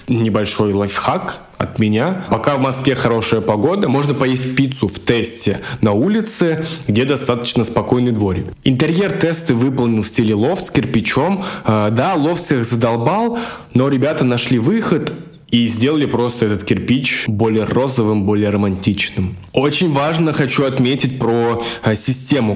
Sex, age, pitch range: male, 20-39, 110-145 Hz